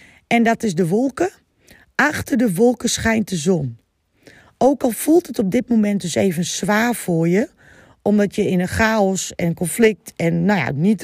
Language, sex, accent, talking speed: Dutch, female, Dutch, 175 wpm